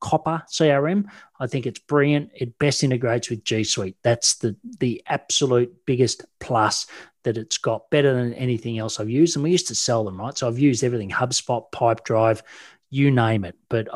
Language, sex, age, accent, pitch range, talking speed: English, male, 40-59, Australian, 115-140 Hz, 195 wpm